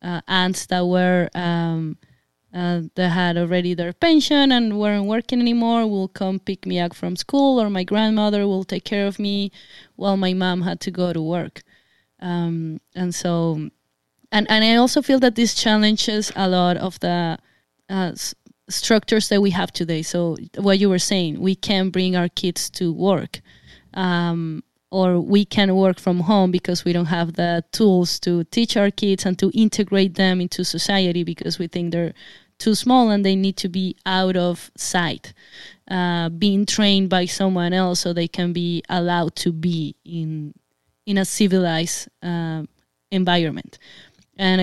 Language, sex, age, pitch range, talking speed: English, female, 20-39, 175-200 Hz, 175 wpm